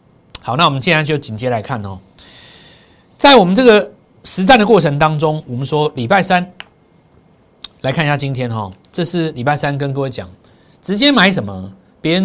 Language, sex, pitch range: Chinese, male, 115-175 Hz